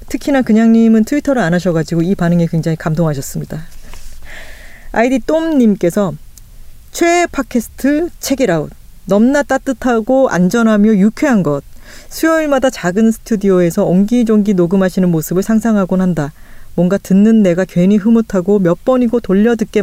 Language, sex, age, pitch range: Korean, female, 40-59, 170-230 Hz